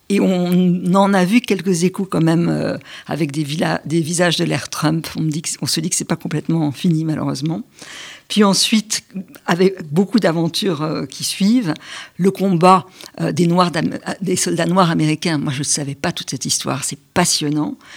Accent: French